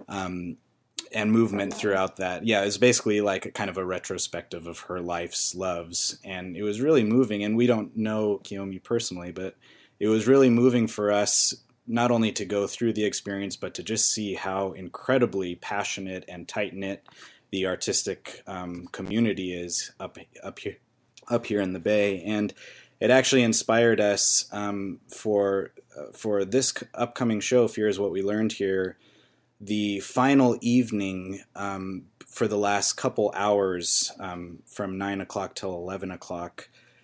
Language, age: English, 30-49